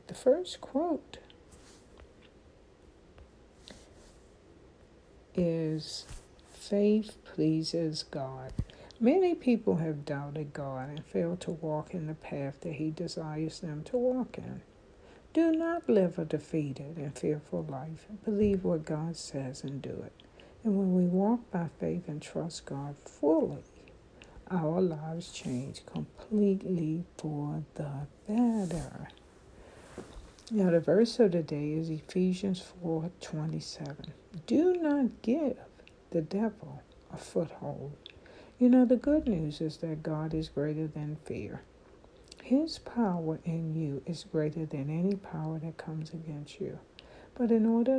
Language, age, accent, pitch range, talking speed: English, 60-79, American, 155-205 Hz, 130 wpm